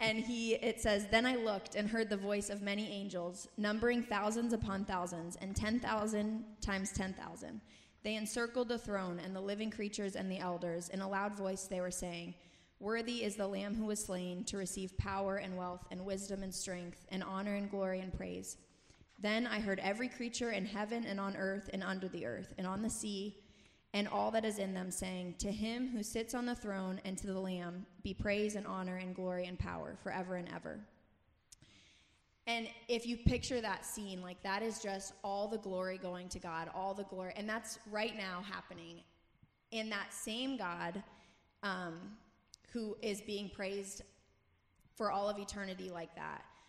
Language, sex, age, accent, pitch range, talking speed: English, female, 20-39, American, 185-215 Hz, 195 wpm